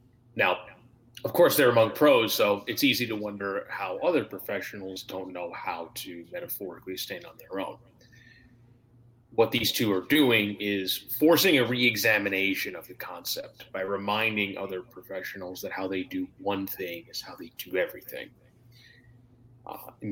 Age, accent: 30-49, American